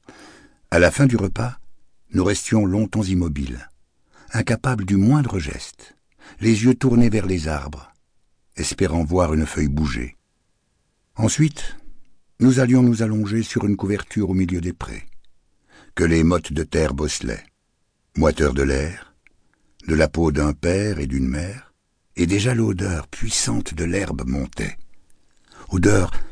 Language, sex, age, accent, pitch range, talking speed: French, male, 60-79, French, 75-110 Hz, 140 wpm